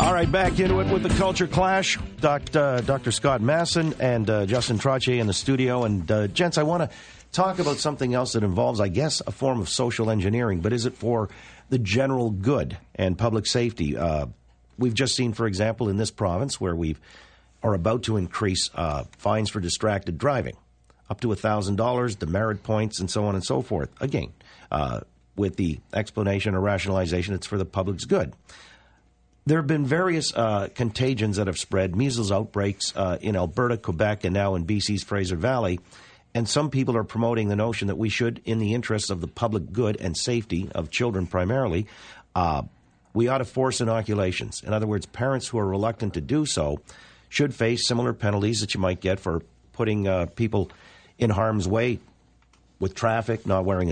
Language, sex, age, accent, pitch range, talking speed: English, male, 50-69, American, 95-120 Hz, 190 wpm